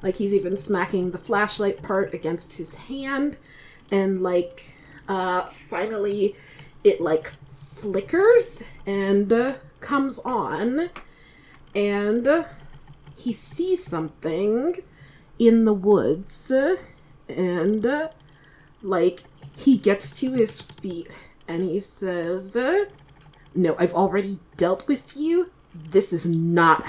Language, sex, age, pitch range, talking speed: English, female, 20-39, 175-270 Hz, 105 wpm